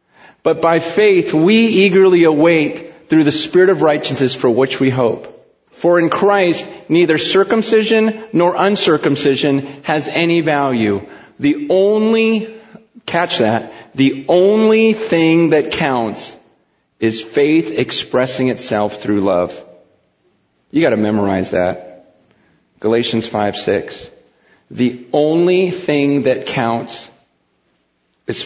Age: 40-59